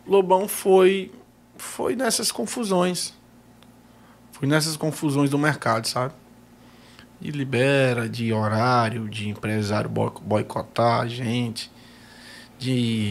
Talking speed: 90 wpm